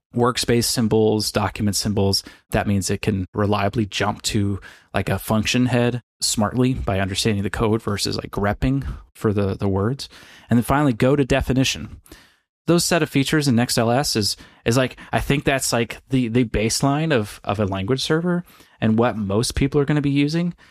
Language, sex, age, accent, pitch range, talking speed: English, male, 20-39, American, 105-130 Hz, 185 wpm